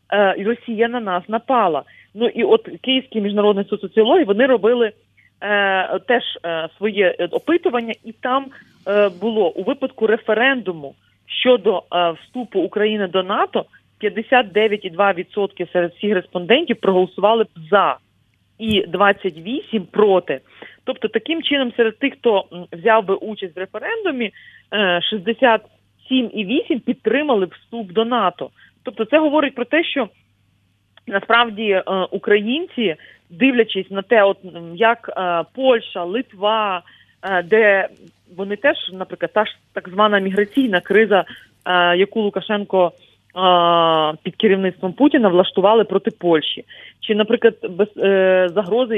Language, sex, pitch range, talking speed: Ukrainian, female, 185-235 Hz, 115 wpm